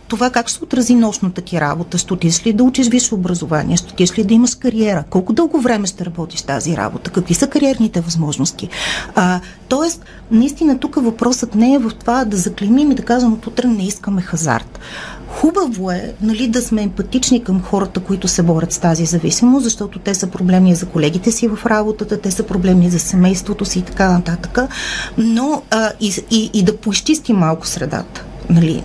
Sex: female